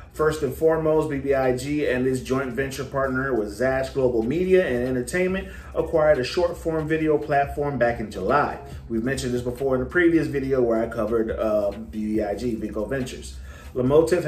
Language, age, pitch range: English, 30-49, 125-170 Hz